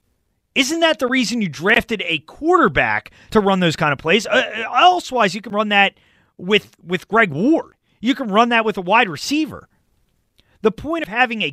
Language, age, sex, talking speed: English, 30-49, male, 195 wpm